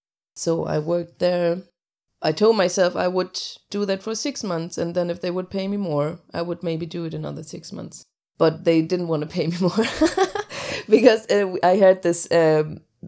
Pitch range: 155-190 Hz